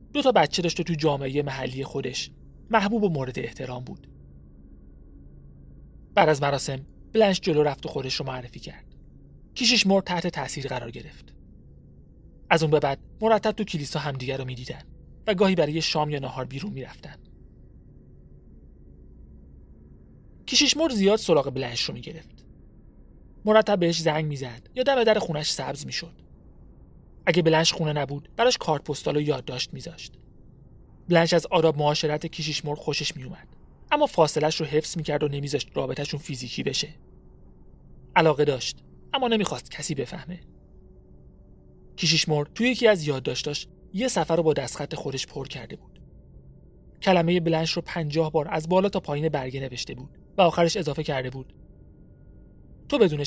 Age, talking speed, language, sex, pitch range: 30-49, 150 wpm, Persian, male, 130-170 Hz